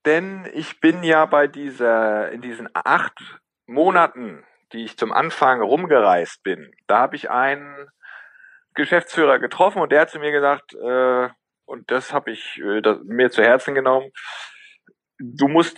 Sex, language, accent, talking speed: male, German, German, 150 wpm